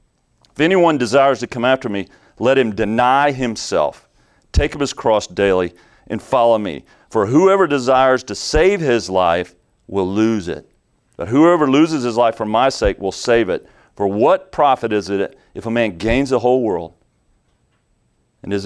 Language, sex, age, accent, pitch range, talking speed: English, male, 40-59, American, 90-120 Hz, 175 wpm